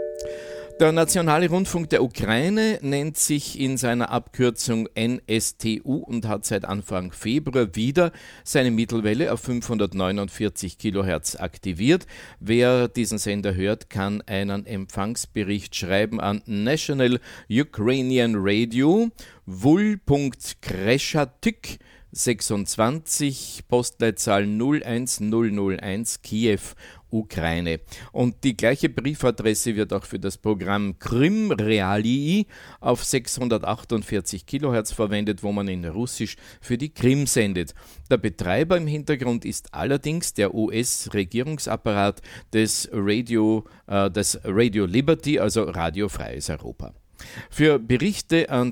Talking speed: 105 wpm